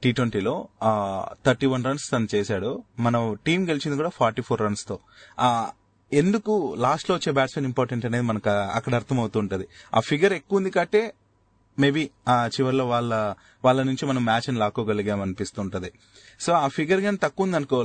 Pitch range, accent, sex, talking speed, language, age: 110-140 Hz, native, male, 160 wpm, Telugu, 30-49